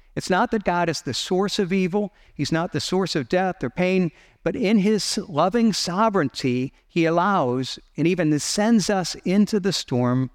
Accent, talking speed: American, 180 wpm